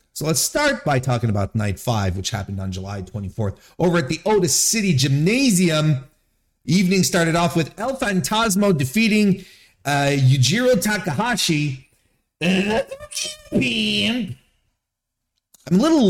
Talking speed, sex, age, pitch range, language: 120 wpm, male, 30-49, 105-170 Hz, English